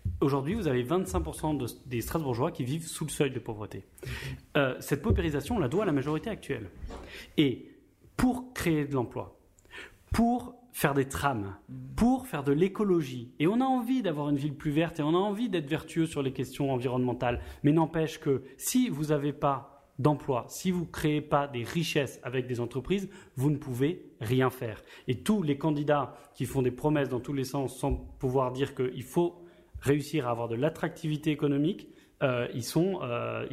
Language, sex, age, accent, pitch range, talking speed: French, male, 30-49, French, 125-160 Hz, 190 wpm